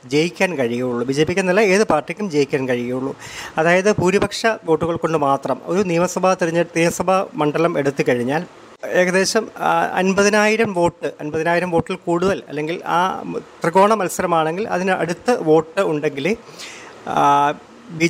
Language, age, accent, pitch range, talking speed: Malayalam, 30-49, native, 155-200 Hz, 120 wpm